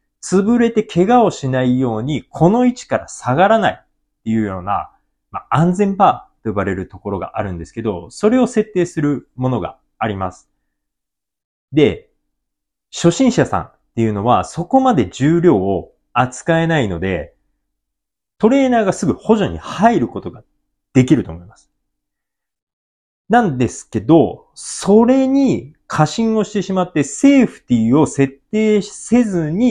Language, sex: Japanese, male